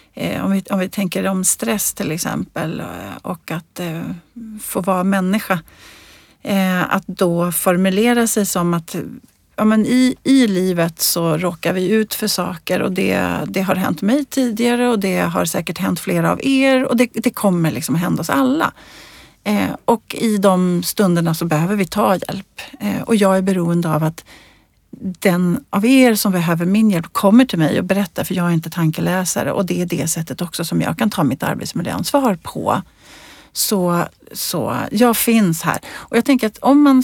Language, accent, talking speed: Swedish, native, 175 wpm